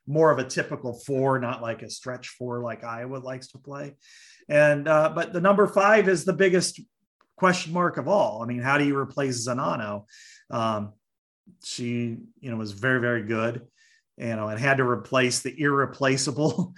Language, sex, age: English, male, 40-59